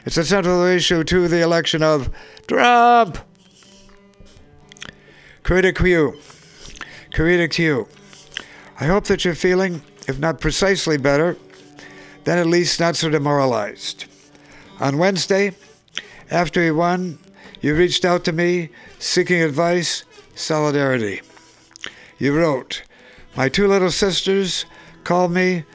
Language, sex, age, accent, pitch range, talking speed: English, male, 60-79, American, 145-185 Hz, 115 wpm